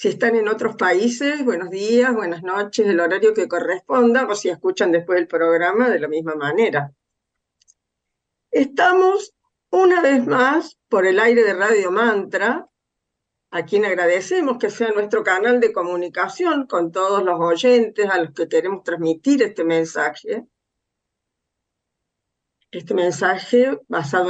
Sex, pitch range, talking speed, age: female, 170-275 Hz, 140 wpm, 50-69